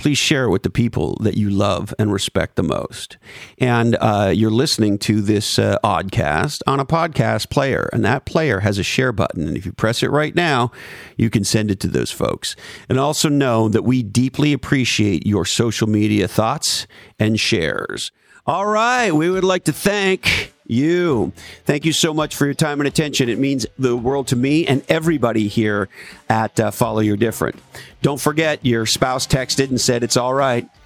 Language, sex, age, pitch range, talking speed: English, male, 50-69, 110-145 Hz, 190 wpm